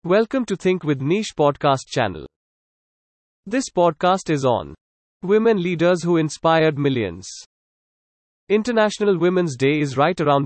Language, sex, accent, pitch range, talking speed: English, male, Indian, 135-180 Hz, 125 wpm